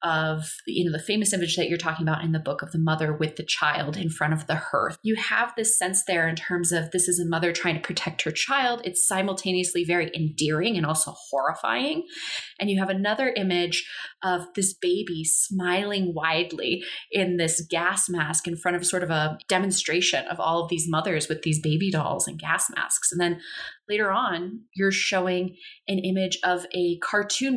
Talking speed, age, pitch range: 195 wpm, 20-39, 160-190 Hz